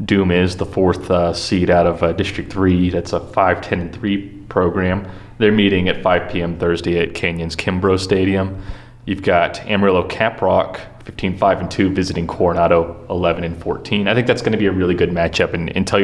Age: 30-49